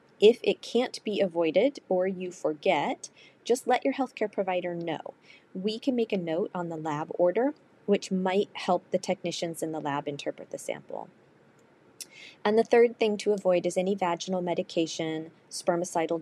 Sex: female